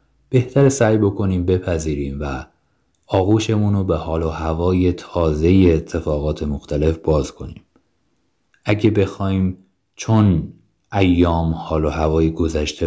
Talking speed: 110 wpm